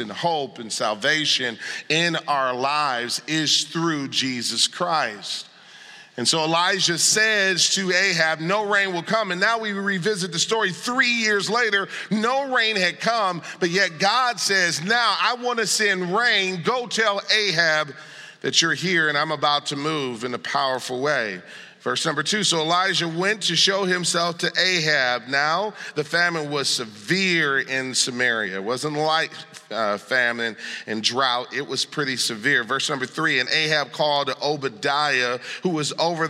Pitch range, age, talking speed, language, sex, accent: 140-190 Hz, 40-59, 160 wpm, English, male, American